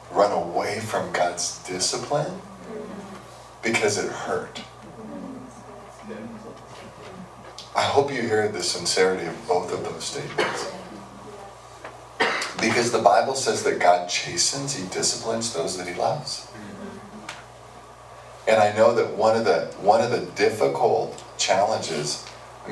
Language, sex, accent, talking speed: English, male, American, 120 wpm